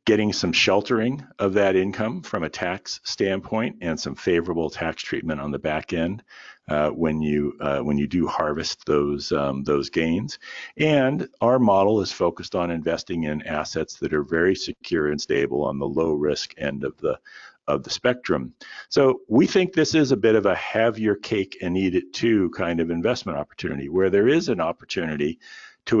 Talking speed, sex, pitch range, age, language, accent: 190 wpm, male, 80-105 Hz, 50-69, English, American